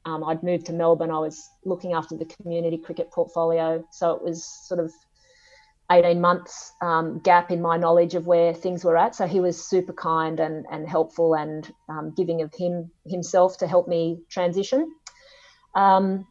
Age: 30-49